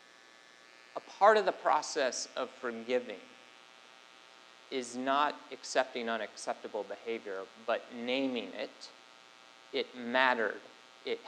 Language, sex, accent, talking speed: English, male, American, 90 wpm